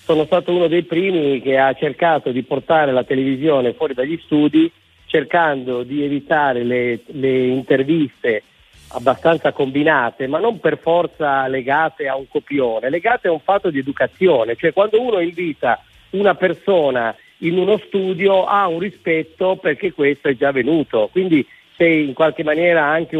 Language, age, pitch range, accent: Italian, 40-59, 140-180 Hz, native